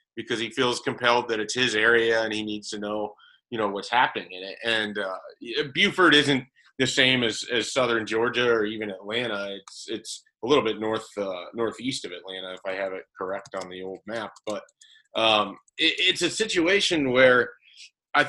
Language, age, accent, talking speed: English, 30-49, American, 195 wpm